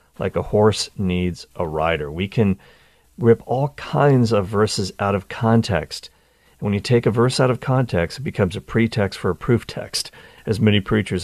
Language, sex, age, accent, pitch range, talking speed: English, male, 40-59, American, 95-120 Hz, 185 wpm